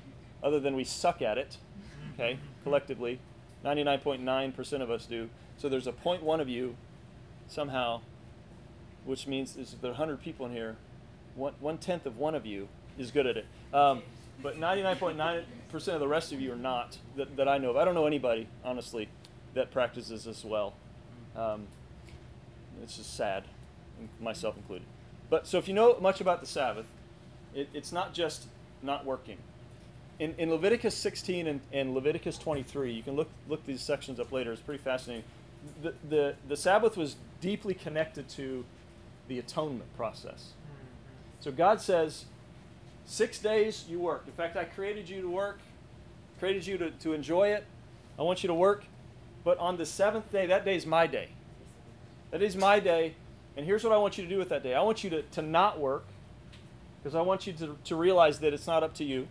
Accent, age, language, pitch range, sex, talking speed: American, 40-59, English, 120-170 Hz, male, 185 wpm